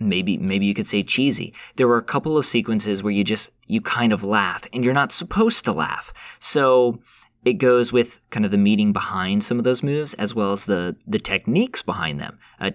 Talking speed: 220 wpm